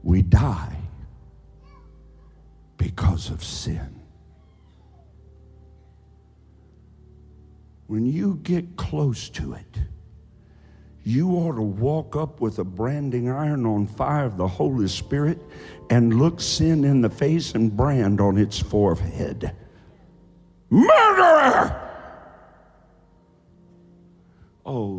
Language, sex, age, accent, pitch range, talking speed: English, male, 60-79, American, 80-120 Hz, 95 wpm